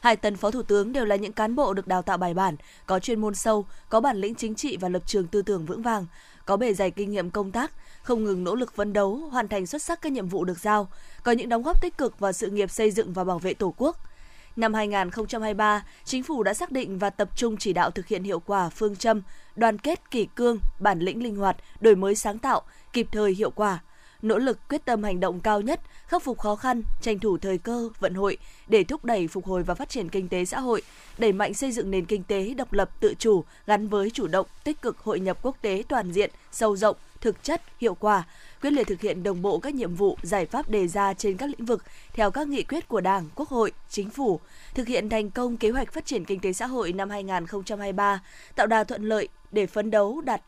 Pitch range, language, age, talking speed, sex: 195-240 Hz, Vietnamese, 20-39, 250 wpm, female